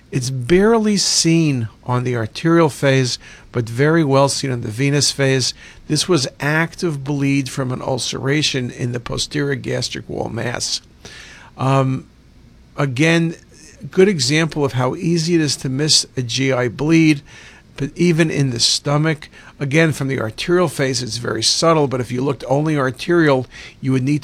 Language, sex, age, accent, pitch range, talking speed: English, male, 50-69, American, 125-150 Hz, 160 wpm